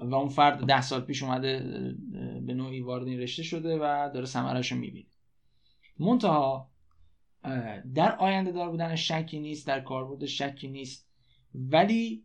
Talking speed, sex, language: 140 wpm, male, Persian